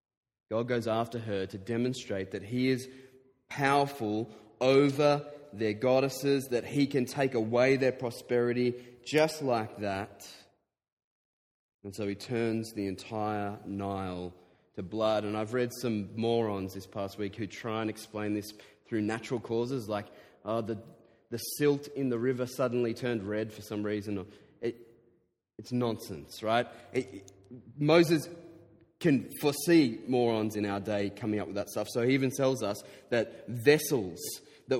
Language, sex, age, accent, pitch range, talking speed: English, male, 30-49, Australian, 105-130 Hz, 150 wpm